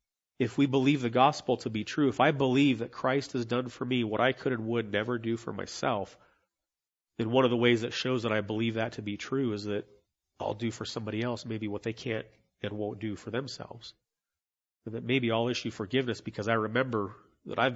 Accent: American